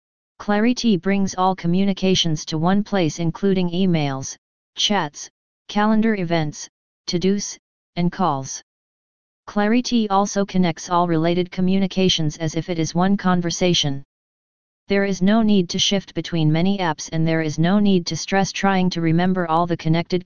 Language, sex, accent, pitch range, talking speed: English, female, American, 165-190 Hz, 145 wpm